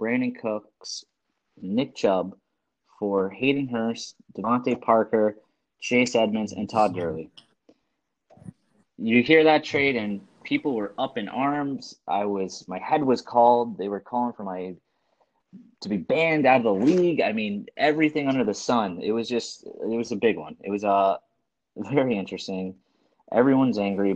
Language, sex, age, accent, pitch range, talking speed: English, male, 20-39, American, 100-125 Hz, 160 wpm